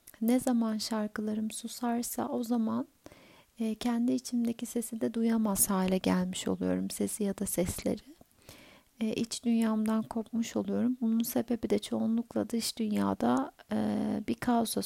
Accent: native